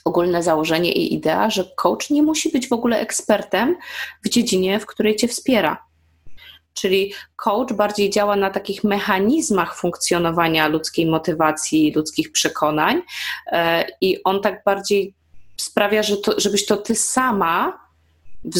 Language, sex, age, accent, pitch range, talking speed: Polish, female, 20-39, native, 160-210 Hz, 130 wpm